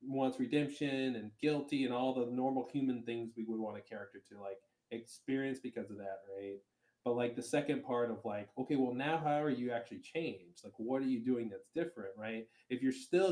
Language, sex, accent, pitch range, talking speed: English, male, American, 105-135 Hz, 215 wpm